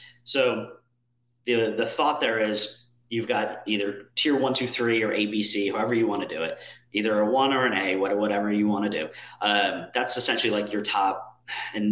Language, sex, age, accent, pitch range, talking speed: English, male, 30-49, American, 100-120 Hz, 195 wpm